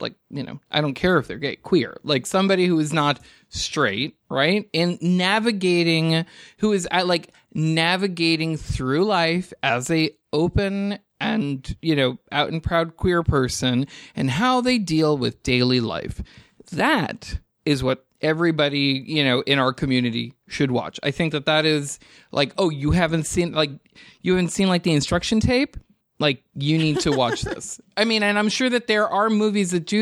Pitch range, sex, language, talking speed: 140-185 Hz, male, English, 180 wpm